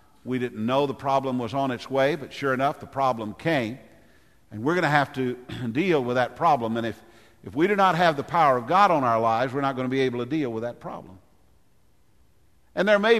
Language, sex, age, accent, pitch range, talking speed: English, male, 50-69, American, 115-145 Hz, 240 wpm